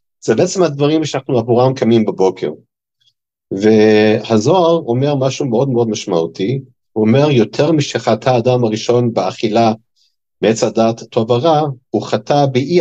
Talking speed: 125 wpm